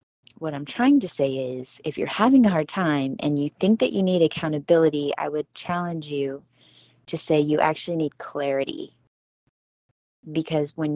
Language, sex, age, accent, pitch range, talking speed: English, female, 20-39, American, 135-160 Hz, 170 wpm